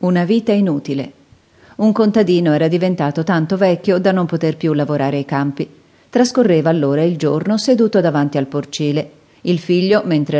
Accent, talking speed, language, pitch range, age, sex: native, 155 wpm, Italian, 150-205 Hz, 40-59, female